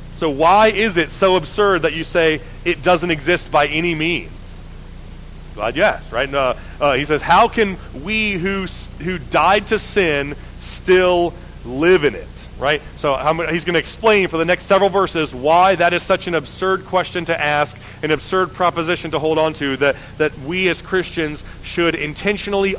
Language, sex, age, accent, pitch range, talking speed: English, male, 40-59, American, 150-180 Hz, 185 wpm